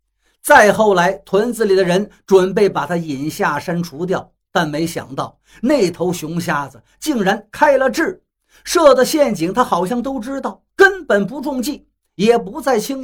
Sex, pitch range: male, 180-245 Hz